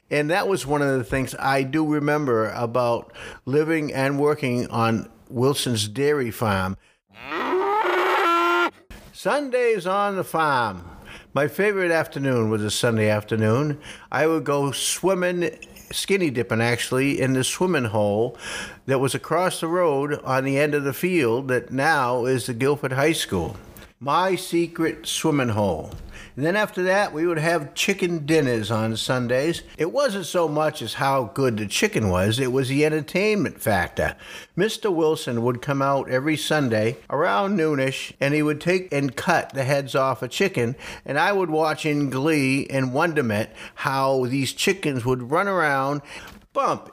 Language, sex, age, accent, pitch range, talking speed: English, male, 60-79, American, 125-170 Hz, 155 wpm